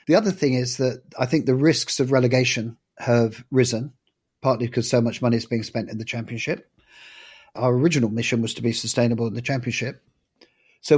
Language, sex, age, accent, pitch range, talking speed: English, male, 40-59, British, 115-130 Hz, 190 wpm